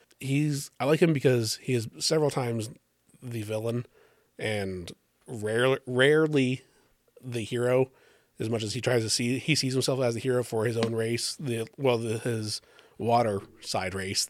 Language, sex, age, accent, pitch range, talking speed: English, male, 30-49, American, 105-125 Hz, 170 wpm